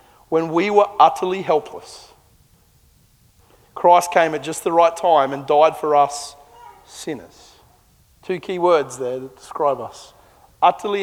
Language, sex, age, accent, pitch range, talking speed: English, male, 30-49, Australian, 155-185 Hz, 135 wpm